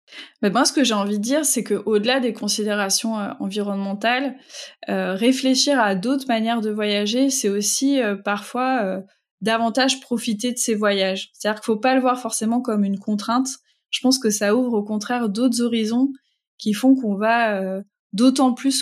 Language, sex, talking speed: French, female, 185 wpm